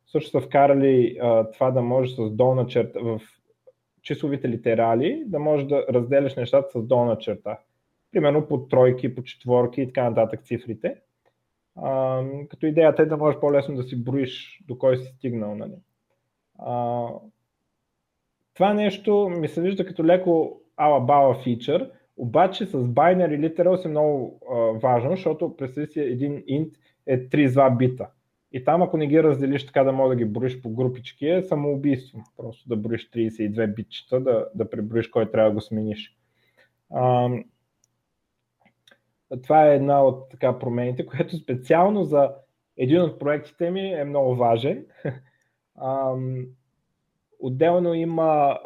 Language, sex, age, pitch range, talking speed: Bulgarian, male, 20-39, 120-150 Hz, 150 wpm